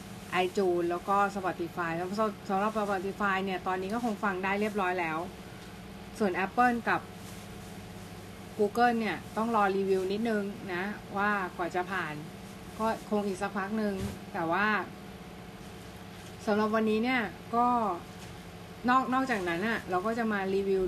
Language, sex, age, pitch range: Thai, female, 20-39, 180-220 Hz